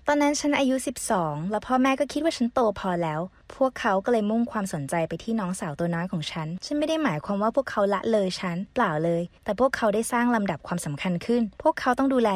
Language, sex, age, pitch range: Thai, female, 20-39, 185-250 Hz